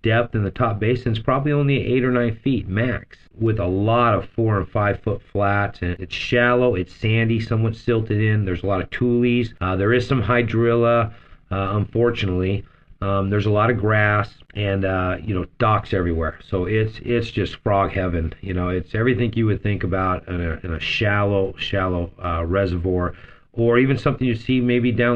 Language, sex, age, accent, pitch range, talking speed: English, male, 40-59, American, 95-115 Hz, 200 wpm